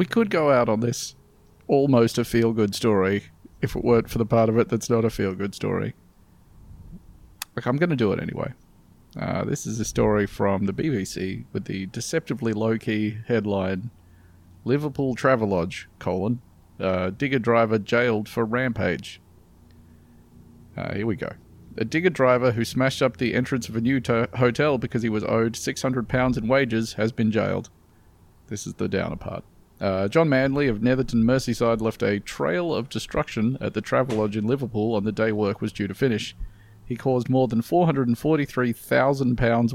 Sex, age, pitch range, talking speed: male, 40-59, 105-130 Hz, 170 wpm